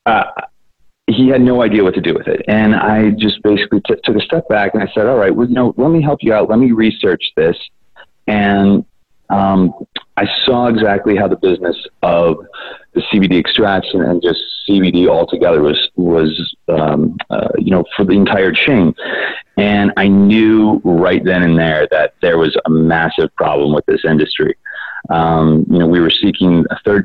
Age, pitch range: 30-49, 90-110 Hz